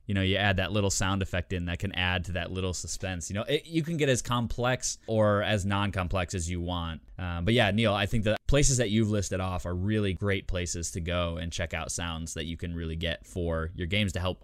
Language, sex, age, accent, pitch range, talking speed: English, male, 20-39, American, 90-110 Hz, 255 wpm